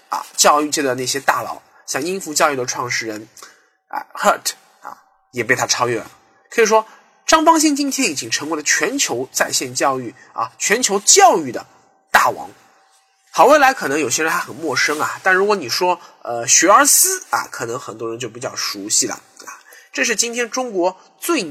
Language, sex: Chinese, male